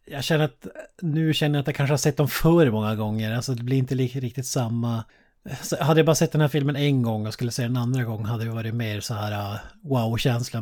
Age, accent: 30-49, native